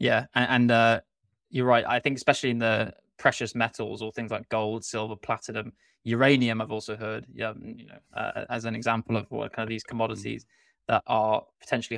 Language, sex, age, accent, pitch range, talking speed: English, male, 20-39, British, 110-120 Hz, 190 wpm